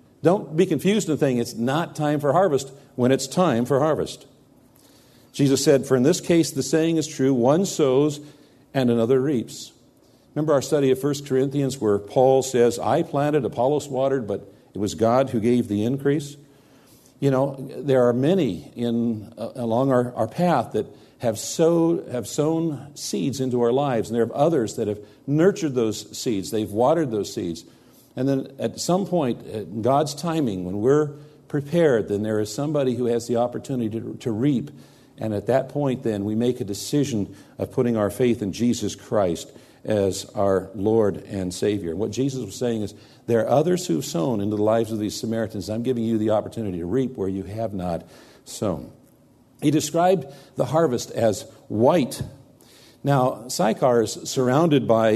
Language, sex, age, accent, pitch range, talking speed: English, male, 50-69, American, 110-145 Hz, 180 wpm